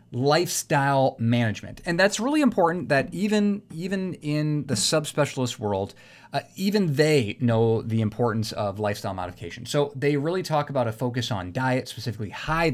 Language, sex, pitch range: English, male, 115-145 Hz